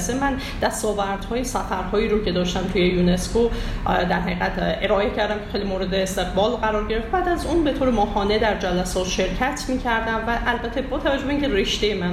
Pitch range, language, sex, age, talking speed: 185-225 Hz, Persian, female, 30-49, 180 wpm